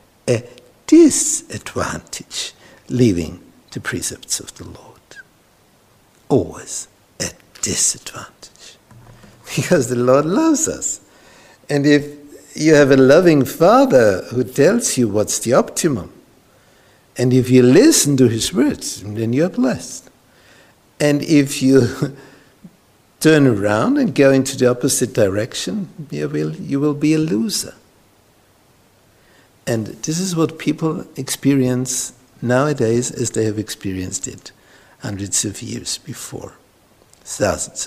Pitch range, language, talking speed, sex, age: 110-145 Hz, English, 115 wpm, male, 60-79